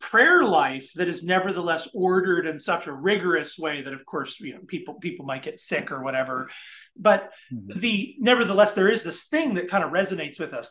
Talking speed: 200 wpm